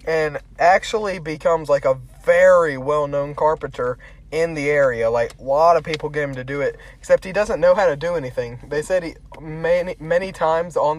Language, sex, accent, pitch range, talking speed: English, male, American, 140-200 Hz, 195 wpm